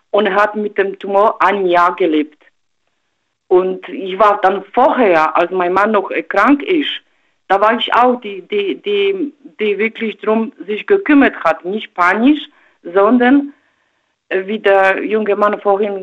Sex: female